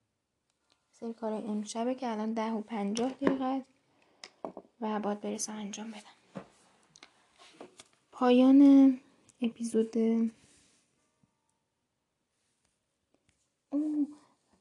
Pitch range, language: 220-255 Hz, Persian